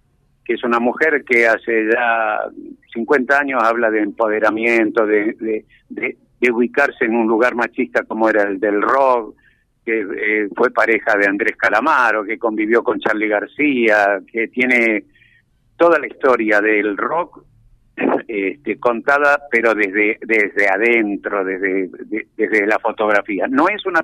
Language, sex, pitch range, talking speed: Spanish, male, 105-125 Hz, 150 wpm